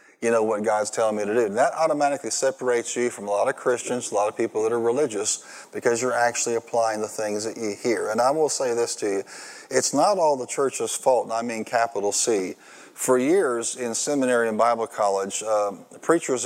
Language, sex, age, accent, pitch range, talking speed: English, male, 40-59, American, 110-125 Hz, 220 wpm